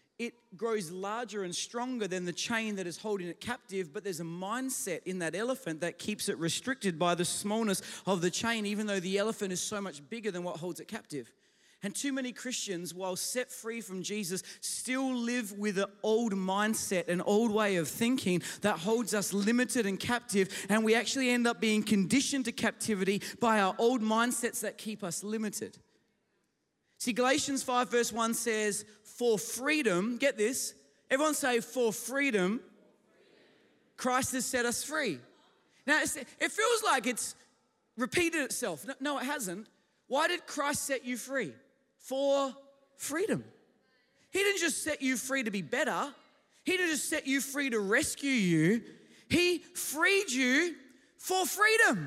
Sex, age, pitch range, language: male, 30-49, 200-265 Hz, English